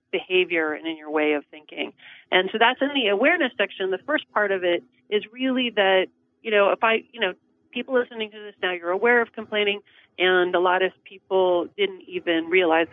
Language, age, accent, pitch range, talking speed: English, 40-59, American, 165-215 Hz, 210 wpm